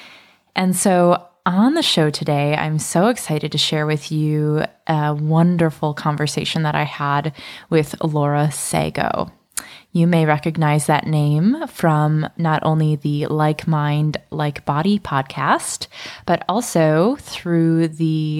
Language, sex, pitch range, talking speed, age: English, female, 150-170 Hz, 130 wpm, 20-39